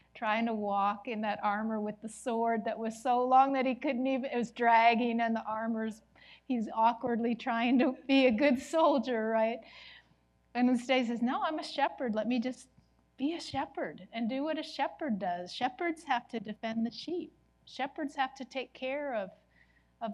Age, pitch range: 40-59, 195-265 Hz